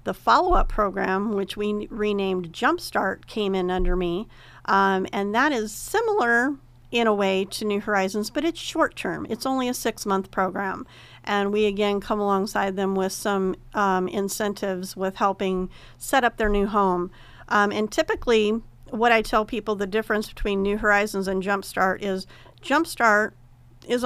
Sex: female